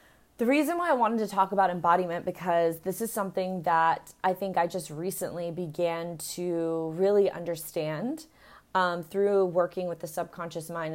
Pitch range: 165-200 Hz